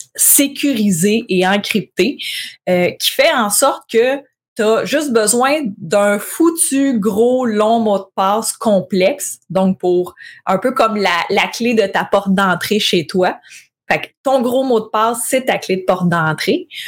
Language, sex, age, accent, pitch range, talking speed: French, female, 20-39, Canadian, 190-235 Hz, 170 wpm